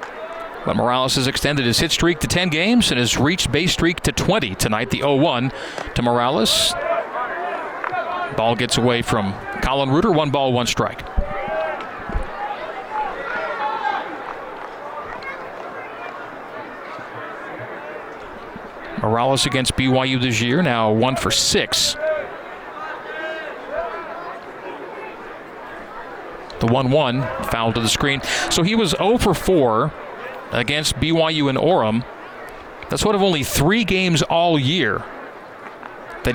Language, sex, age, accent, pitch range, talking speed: English, male, 40-59, American, 120-160 Hz, 110 wpm